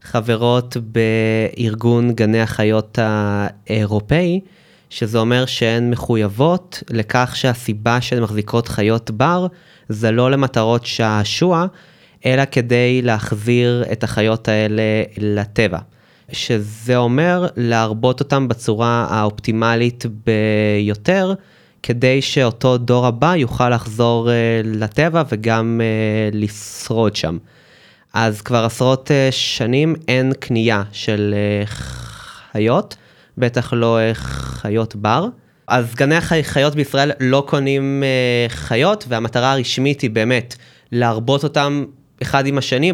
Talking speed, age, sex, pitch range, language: 100 wpm, 20-39, male, 110-130 Hz, Hebrew